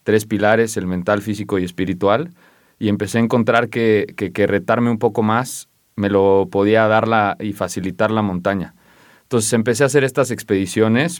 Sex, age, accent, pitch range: male, 30-49, Mexican, 100-115 Hz